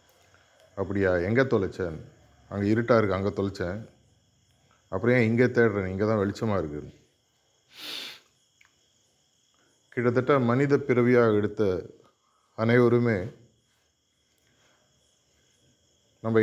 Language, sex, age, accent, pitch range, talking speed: Tamil, male, 30-49, native, 105-120 Hz, 75 wpm